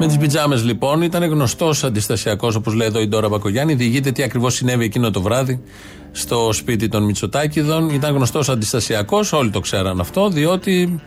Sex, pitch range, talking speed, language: male, 115-150 Hz, 175 wpm, Greek